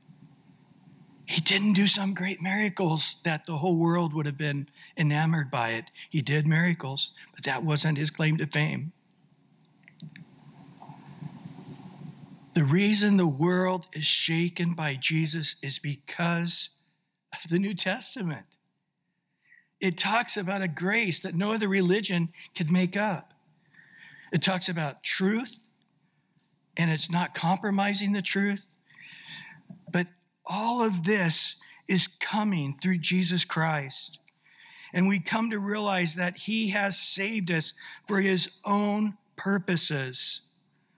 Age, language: 60-79, English